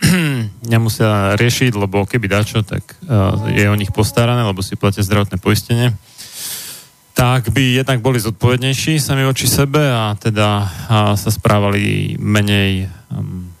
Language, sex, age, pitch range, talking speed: Slovak, male, 30-49, 100-130 Hz, 125 wpm